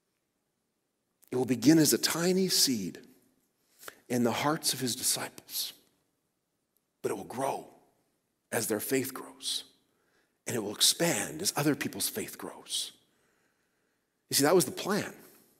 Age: 40-59